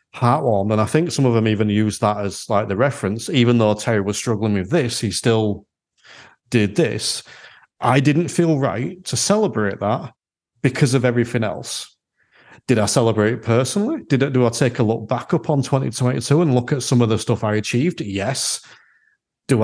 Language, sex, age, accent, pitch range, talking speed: English, male, 40-59, British, 110-145 Hz, 200 wpm